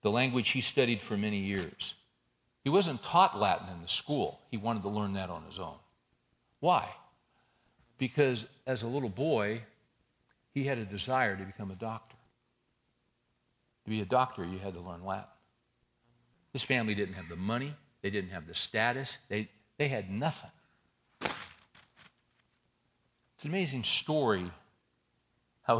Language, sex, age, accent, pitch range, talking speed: English, male, 60-79, American, 95-125 Hz, 150 wpm